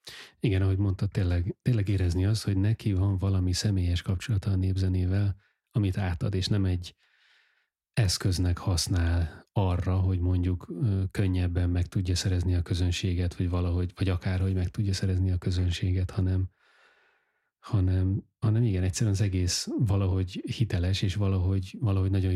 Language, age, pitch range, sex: Hungarian, 30-49, 90-105 Hz, male